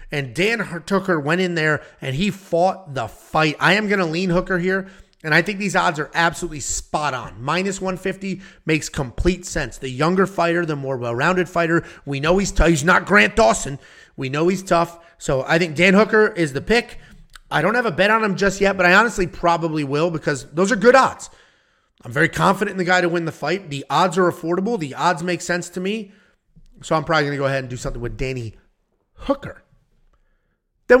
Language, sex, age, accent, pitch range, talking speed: English, male, 30-49, American, 150-195 Hz, 215 wpm